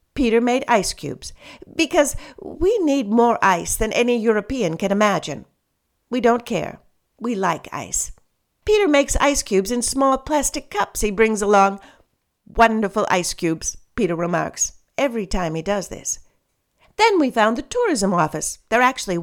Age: 50-69